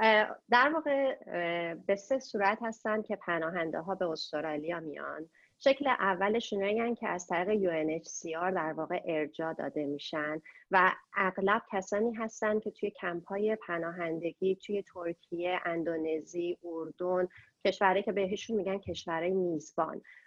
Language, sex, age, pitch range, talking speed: Persian, female, 30-49, 180-220 Hz, 125 wpm